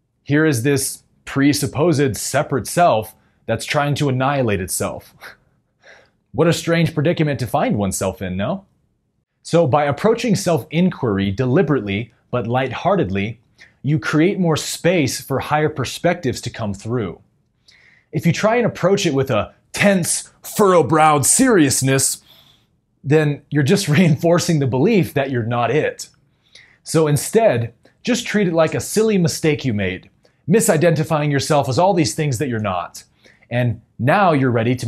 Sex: male